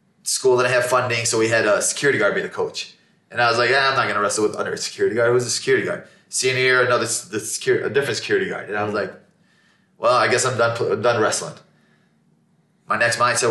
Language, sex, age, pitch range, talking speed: English, male, 20-39, 110-180 Hz, 250 wpm